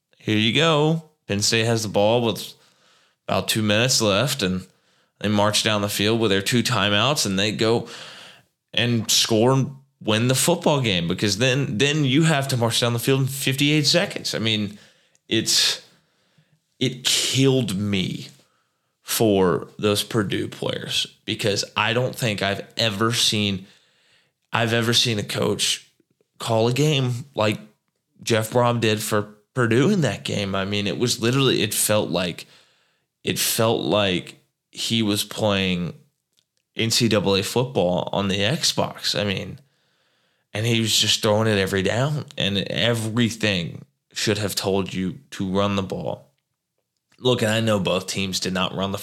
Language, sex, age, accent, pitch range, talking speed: English, male, 20-39, American, 105-130 Hz, 160 wpm